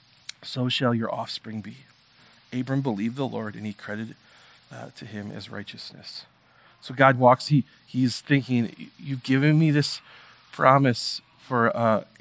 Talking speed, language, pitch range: 145 wpm, English, 115-145 Hz